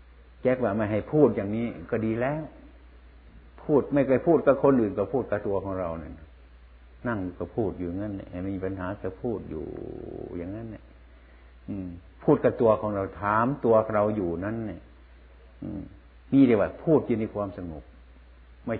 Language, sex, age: Thai, male, 60-79